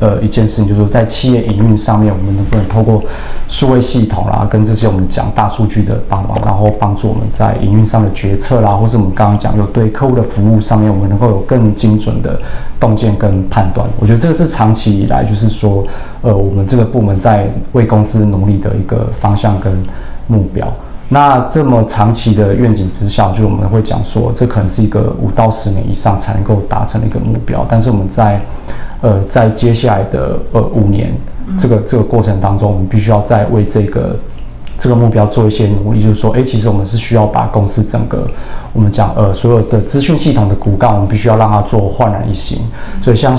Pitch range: 105-115 Hz